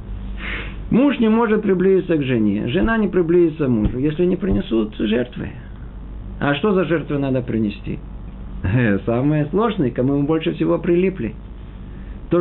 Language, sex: Russian, male